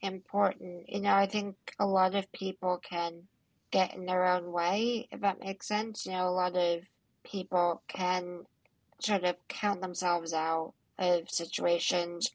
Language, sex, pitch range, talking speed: English, female, 175-195 Hz, 160 wpm